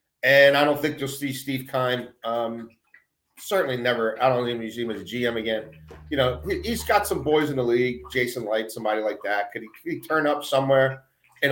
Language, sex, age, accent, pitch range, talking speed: English, male, 40-59, American, 100-145 Hz, 220 wpm